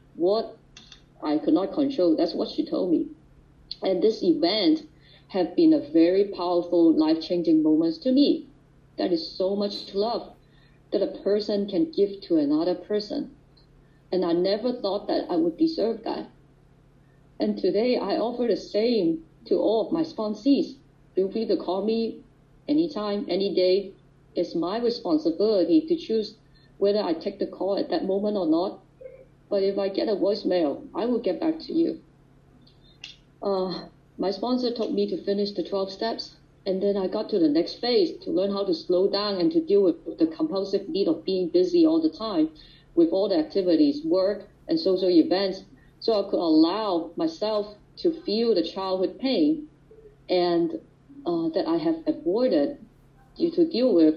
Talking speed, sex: 175 wpm, female